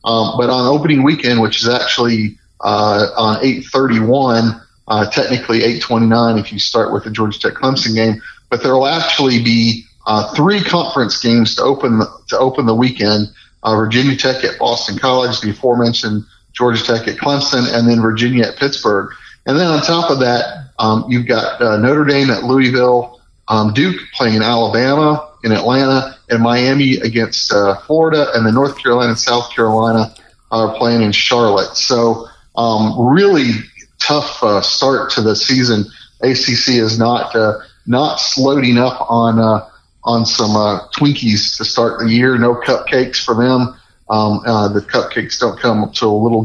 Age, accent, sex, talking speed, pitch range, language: 40-59, American, male, 170 wpm, 110-125 Hz, English